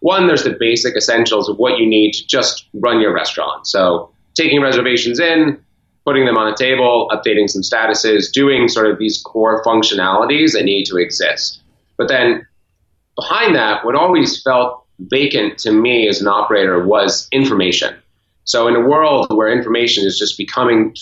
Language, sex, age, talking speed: English, male, 30-49, 170 wpm